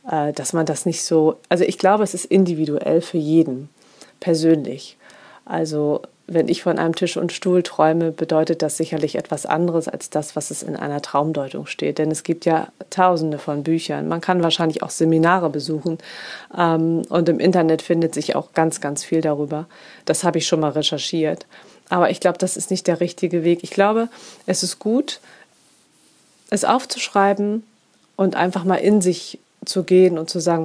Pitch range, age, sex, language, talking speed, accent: 155-185 Hz, 30-49, female, German, 180 wpm, German